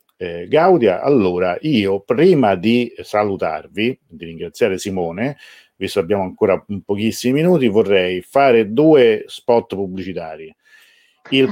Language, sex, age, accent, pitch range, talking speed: Italian, male, 50-69, native, 100-130 Hz, 115 wpm